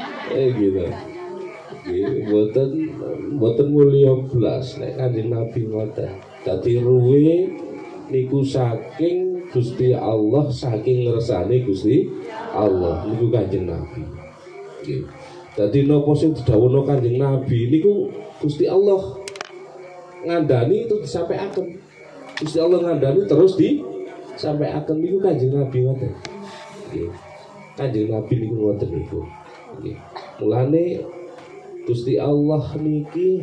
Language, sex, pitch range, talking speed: Indonesian, male, 130-180 Hz, 115 wpm